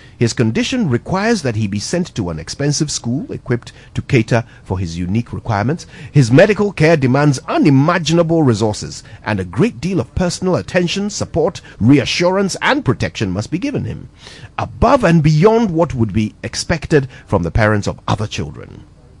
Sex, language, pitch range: male, English, 105-150 Hz